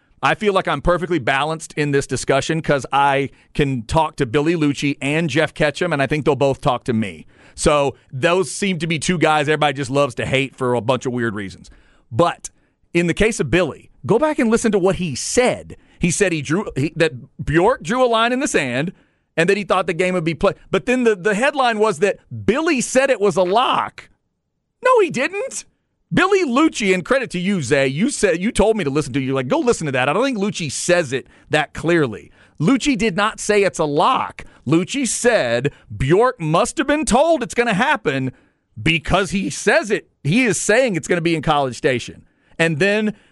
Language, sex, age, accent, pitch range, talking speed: English, male, 40-59, American, 145-215 Hz, 225 wpm